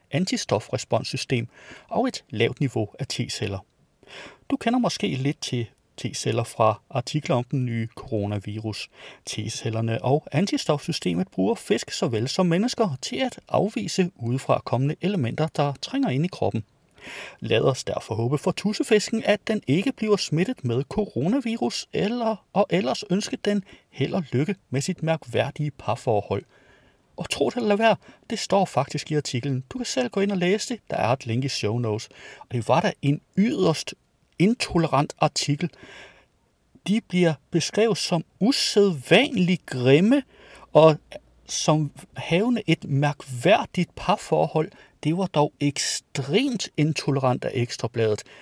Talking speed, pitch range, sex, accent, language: 145 wpm, 125-190 Hz, male, native, Danish